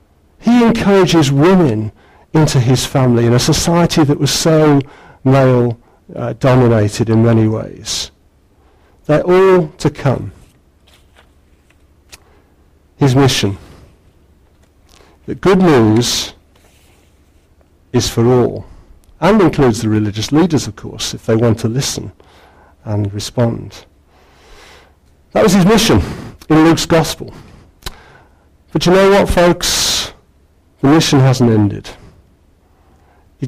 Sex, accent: male, British